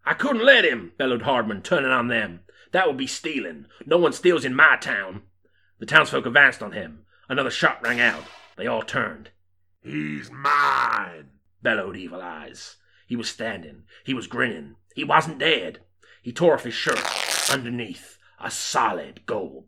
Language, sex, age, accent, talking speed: English, male, 30-49, British, 165 wpm